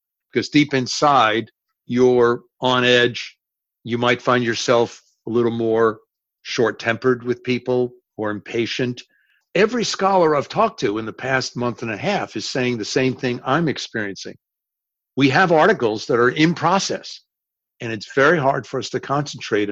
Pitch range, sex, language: 115-140 Hz, male, English